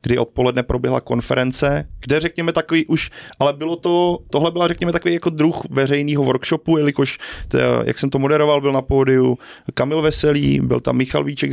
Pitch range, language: 120-145 Hz, Czech